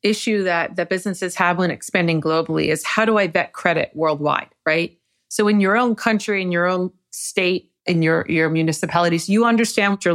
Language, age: English, 30-49